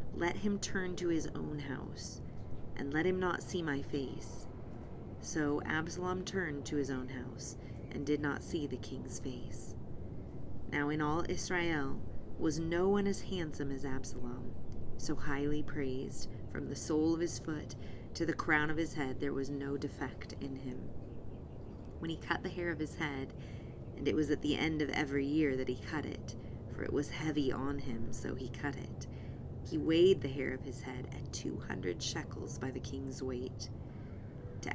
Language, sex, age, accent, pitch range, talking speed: English, female, 30-49, American, 125-155 Hz, 185 wpm